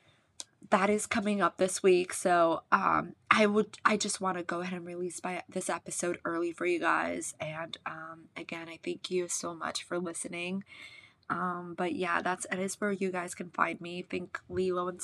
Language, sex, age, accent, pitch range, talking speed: English, female, 20-39, American, 175-200 Hz, 200 wpm